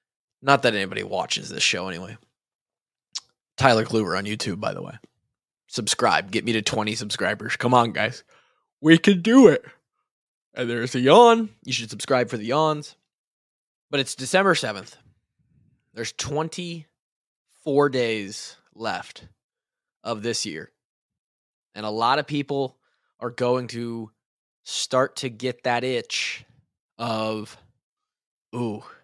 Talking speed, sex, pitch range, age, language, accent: 130 wpm, male, 115-140 Hz, 20-39, English, American